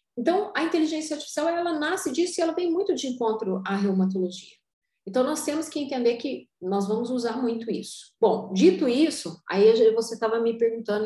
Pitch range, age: 210-270 Hz, 40-59